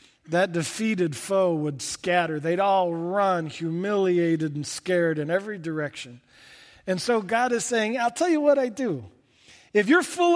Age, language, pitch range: 40-59, English, 155-220 Hz